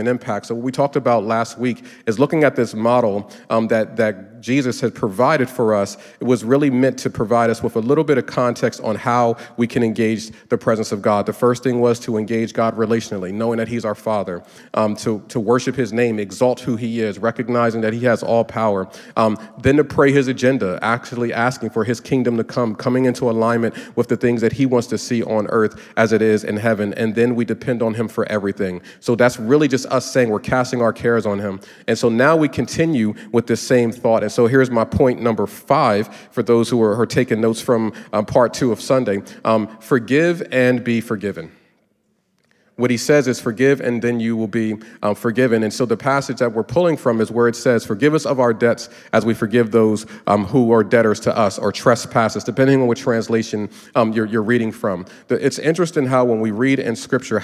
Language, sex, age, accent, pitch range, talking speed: English, male, 40-59, American, 110-125 Hz, 225 wpm